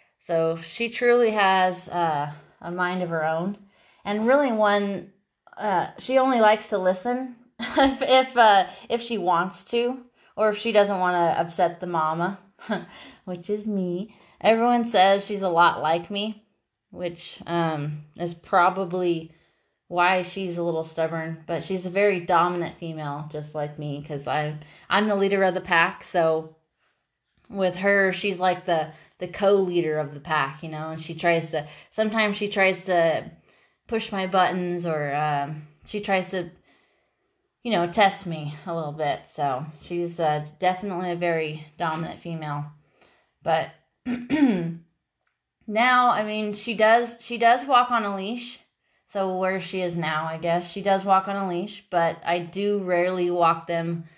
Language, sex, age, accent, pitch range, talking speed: English, female, 20-39, American, 165-200 Hz, 160 wpm